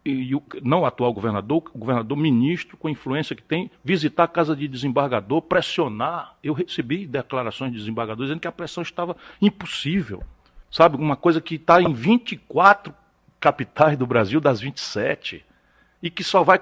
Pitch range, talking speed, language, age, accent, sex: 130-190 Hz, 165 wpm, Portuguese, 60-79, Brazilian, male